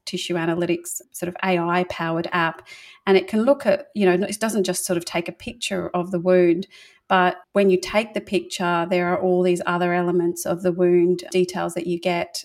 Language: English